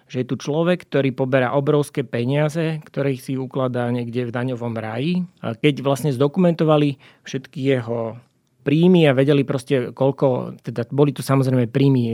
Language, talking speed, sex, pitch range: Slovak, 155 wpm, male, 125-145 Hz